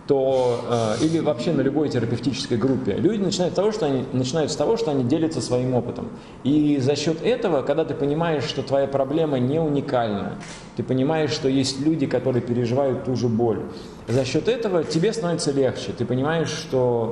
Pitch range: 115-155 Hz